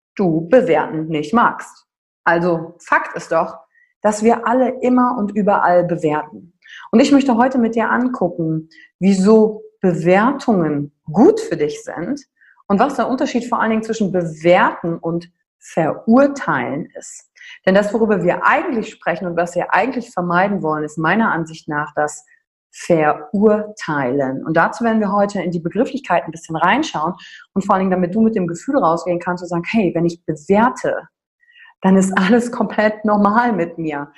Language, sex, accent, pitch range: German, female, German, 170-230 Hz